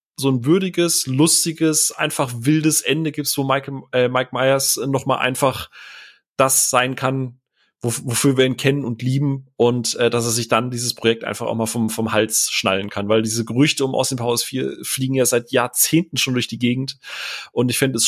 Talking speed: 200 wpm